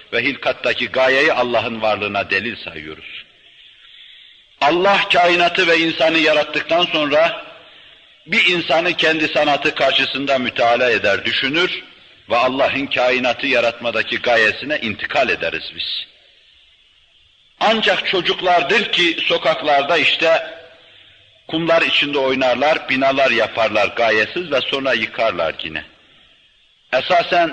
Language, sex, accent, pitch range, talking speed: Turkish, male, native, 130-185 Hz, 100 wpm